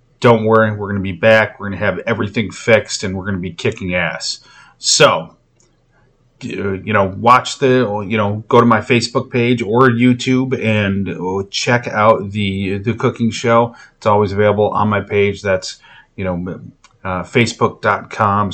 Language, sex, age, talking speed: English, male, 30-49, 170 wpm